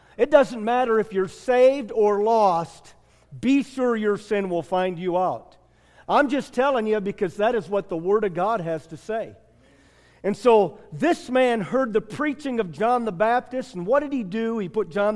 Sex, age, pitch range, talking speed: male, 50-69, 170-245 Hz, 200 wpm